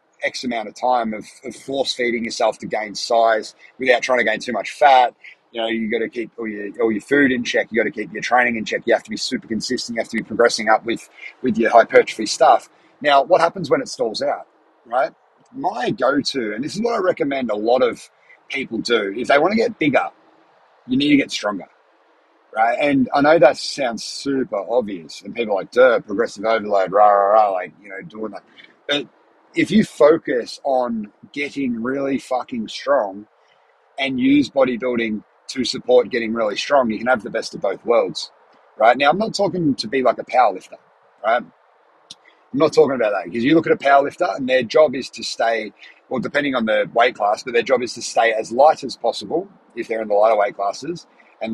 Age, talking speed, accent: 30-49, 220 wpm, Australian